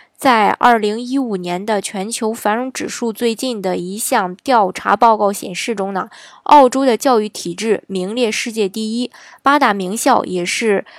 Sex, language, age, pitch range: female, Chinese, 20-39, 195-255 Hz